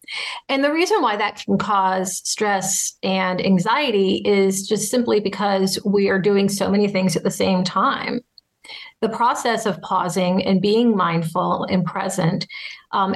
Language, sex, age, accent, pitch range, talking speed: English, female, 40-59, American, 190-235 Hz, 155 wpm